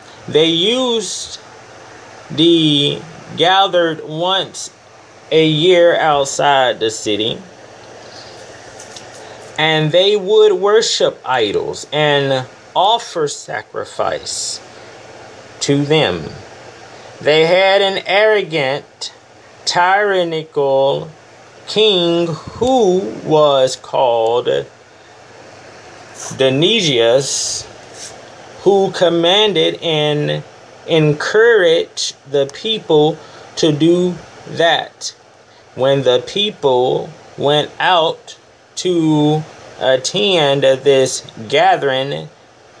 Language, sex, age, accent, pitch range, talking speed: English, male, 30-49, American, 135-200 Hz, 65 wpm